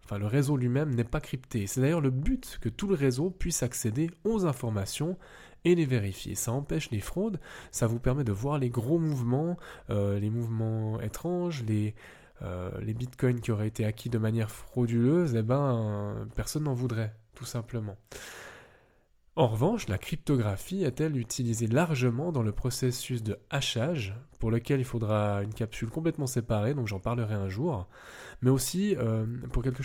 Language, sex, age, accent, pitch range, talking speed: French, male, 10-29, French, 110-140 Hz, 175 wpm